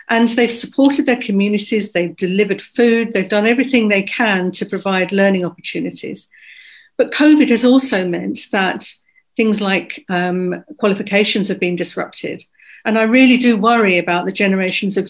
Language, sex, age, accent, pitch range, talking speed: English, female, 50-69, British, 185-230 Hz, 155 wpm